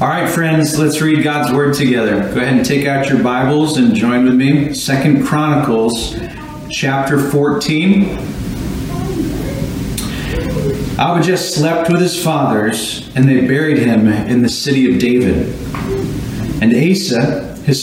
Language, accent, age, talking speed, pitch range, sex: English, American, 40-59, 140 wpm, 120-155 Hz, male